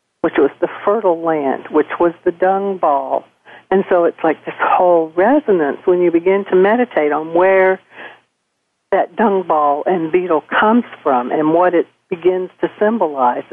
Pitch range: 155-185 Hz